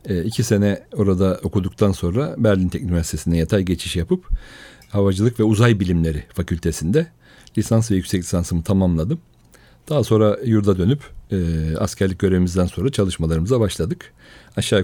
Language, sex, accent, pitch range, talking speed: Turkish, male, native, 85-110 Hz, 135 wpm